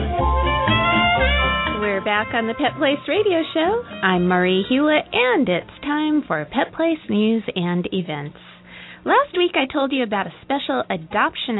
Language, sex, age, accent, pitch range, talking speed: English, female, 30-49, American, 195-275 Hz, 150 wpm